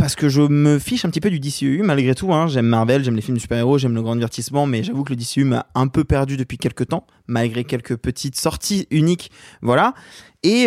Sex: male